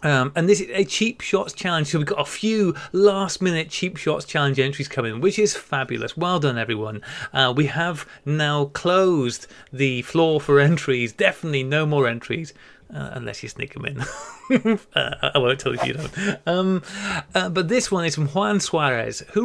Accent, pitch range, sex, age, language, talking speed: British, 140-200 Hz, male, 30-49, English, 190 wpm